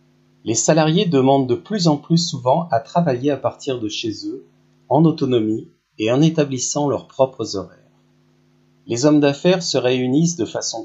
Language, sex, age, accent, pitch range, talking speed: French, male, 40-59, French, 110-160 Hz, 165 wpm